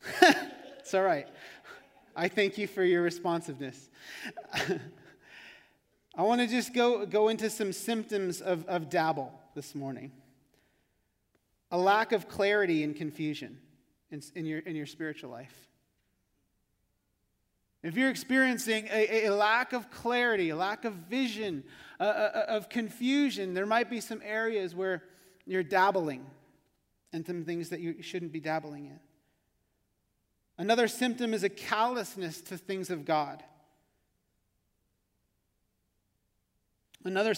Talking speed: 130 wpm